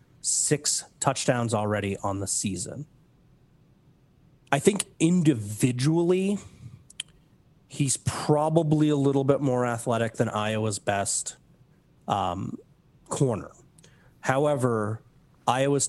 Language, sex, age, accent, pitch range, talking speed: English, male, 30-49, American, 110-145 Hz, 85 wpm